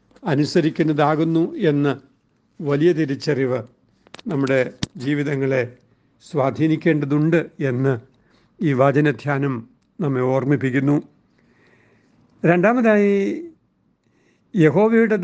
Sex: male